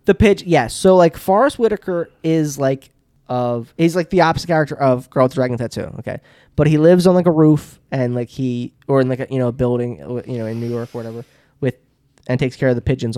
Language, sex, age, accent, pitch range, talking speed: English, male, 10-29, American, 120-140 Hz, 245 wpm